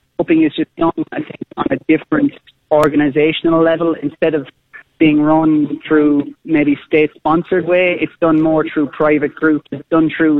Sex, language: male, English